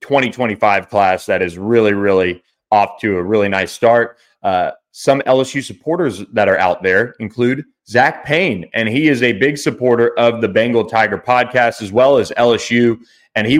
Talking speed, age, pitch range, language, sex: 175 wpm, 30-49, 105-135 Hz, English, male